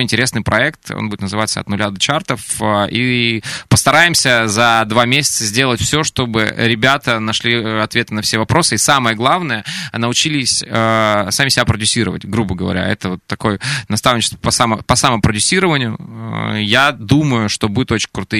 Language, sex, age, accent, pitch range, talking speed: Russian, male, 20-39, native, 105-130 Hz, 145 wpm